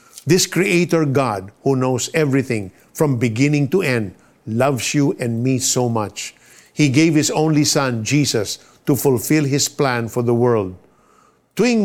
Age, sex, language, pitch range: 50-69, male, Filipino, 120-155 Hz